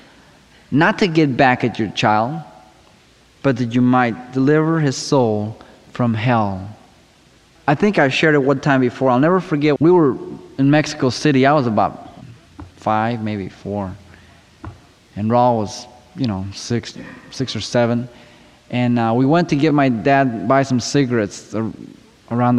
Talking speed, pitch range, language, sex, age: 155 wpm, 110-140 Hz, English, male, 20-39